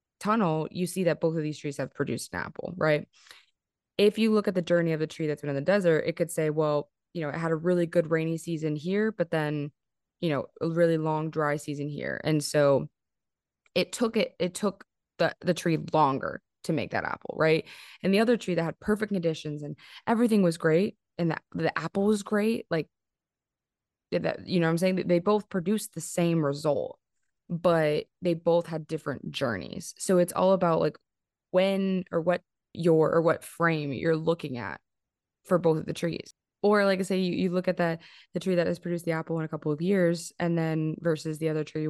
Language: English